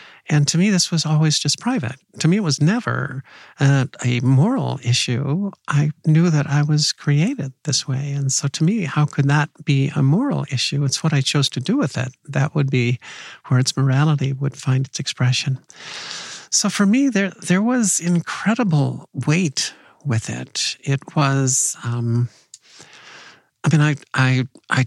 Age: 50-69